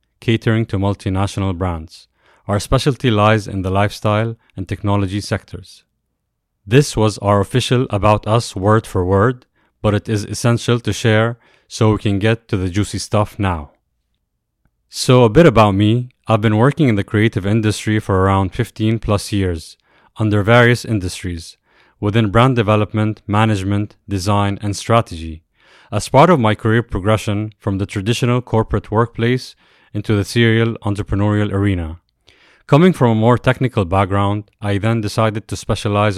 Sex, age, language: male, 30-49, English